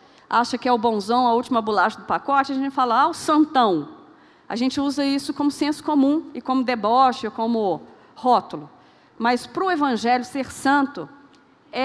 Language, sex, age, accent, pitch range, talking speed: Portuguese, female, 40-59, Brazilian, 230-295 Hz, 175 wpm